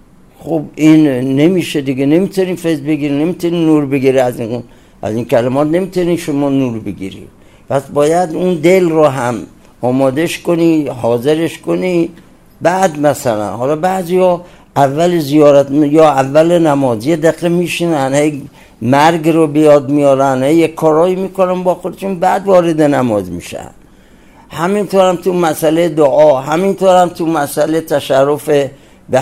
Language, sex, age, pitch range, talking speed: Persian, male, 60-79, 130-175 Hz, 135 wpm